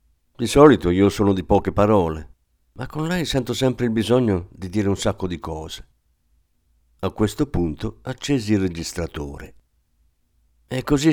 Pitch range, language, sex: 80-110 Hz, Italian, male